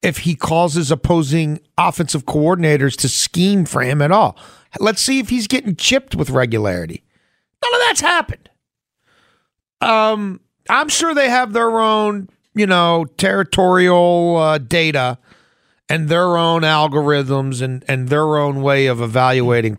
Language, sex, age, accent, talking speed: English, male, 50-69, American, 145 wpm